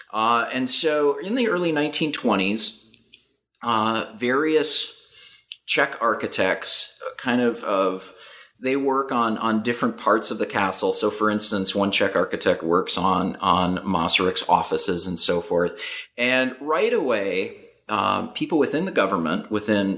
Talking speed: 140 wpm